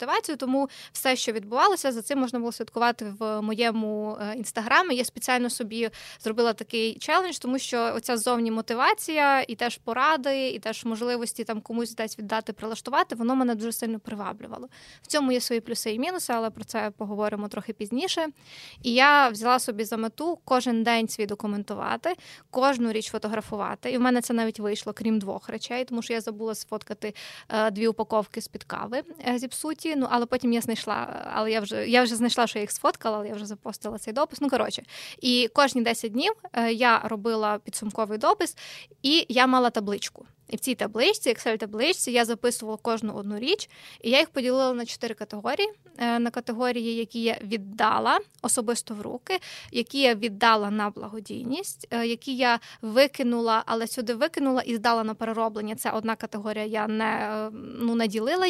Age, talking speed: 20-39, 175 wpm